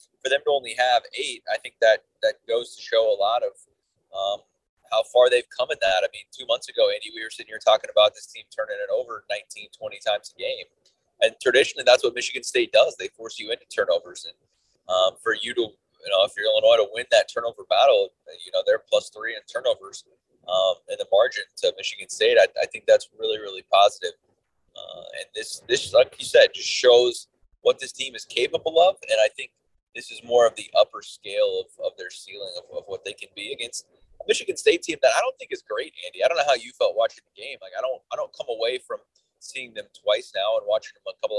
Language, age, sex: English, 30-49, male